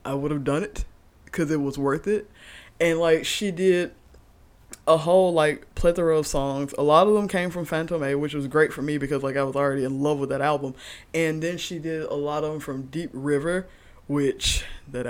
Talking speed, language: 225 wpm, English